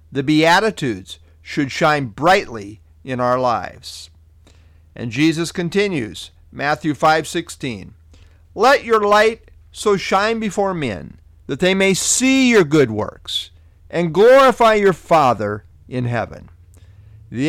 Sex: male